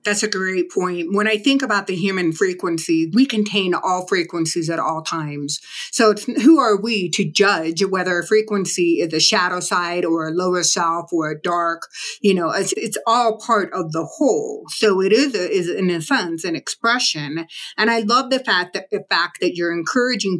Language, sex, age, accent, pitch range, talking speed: English, female, 30-49, American, 170-225 Hz, 205 wpm